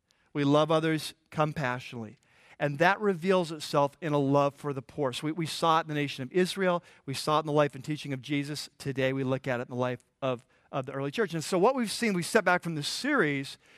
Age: 40-59